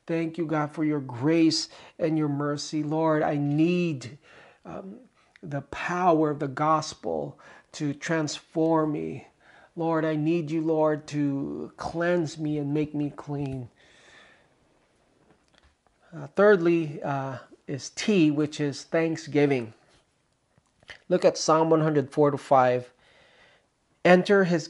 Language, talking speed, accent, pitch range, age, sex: English, 120 wpm, American, 140-165 Hz, 40-59, male